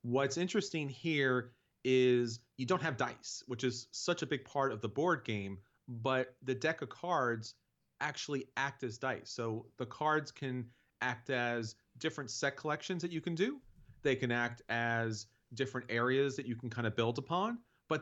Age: 30-49